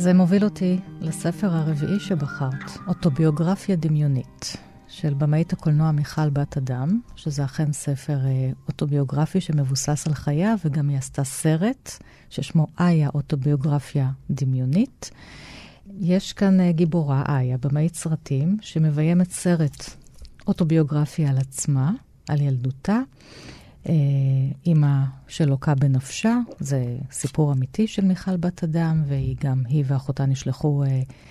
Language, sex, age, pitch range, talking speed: Hebrew, female, 40-59, 145-175 Hz, 115 wpm